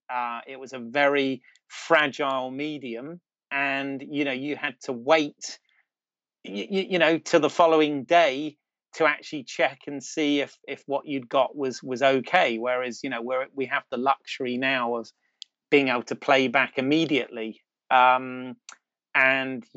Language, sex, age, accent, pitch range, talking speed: English, male, 30-49, British, 120-140 Hz, 160 wpm